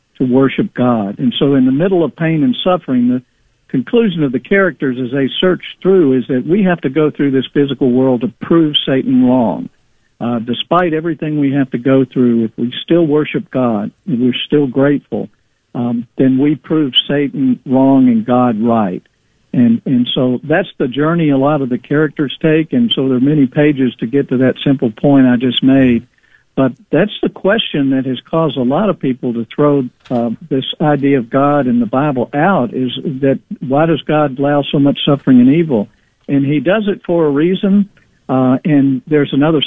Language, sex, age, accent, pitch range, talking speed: English, male, 60-79, American, 125-155 Hz, 200 wpm